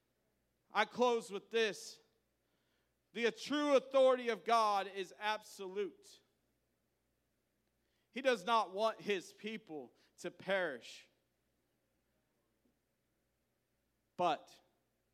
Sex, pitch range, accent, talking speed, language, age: male, 160-210 Hz, American, 80 wpm, English, 40-59